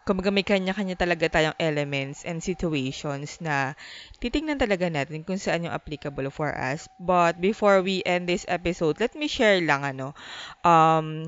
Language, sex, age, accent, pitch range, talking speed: English, female, 20-39, Filipino, 150-195 Hz, 155 wpm